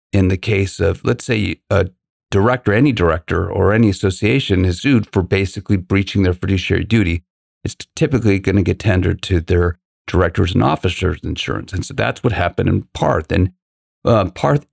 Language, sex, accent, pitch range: English, male, American, 90-110 Hz